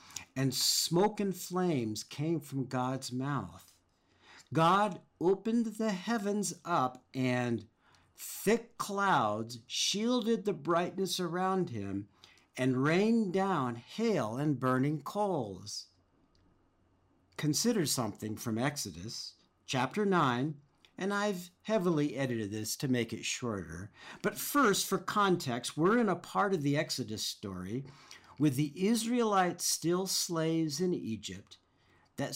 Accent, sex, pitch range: American, male, 115-190 Hz